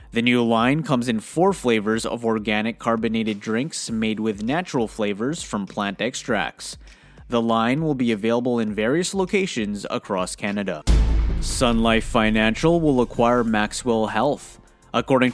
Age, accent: 20-39, American